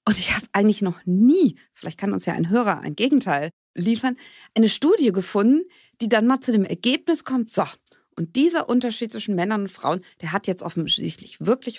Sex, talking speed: female, 195 wpm